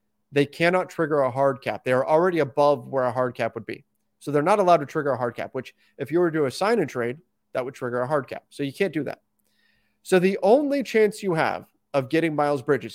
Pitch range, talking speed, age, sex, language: 130-185 Hz, 250 wpm, 30-49, male, English